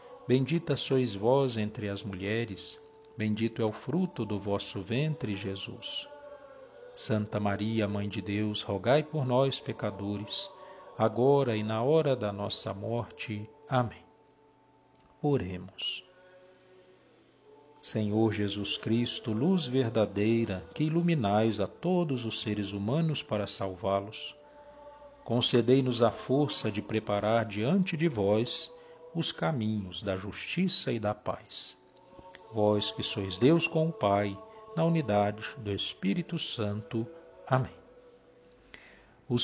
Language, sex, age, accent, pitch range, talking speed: Portuguese, male, 50-69, Brazilian, 105-160 Hz, 115 wpm